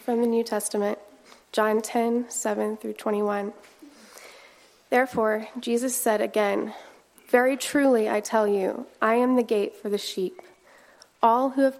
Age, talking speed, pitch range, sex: 20-39, 130 wpm, 205-240 Hz, female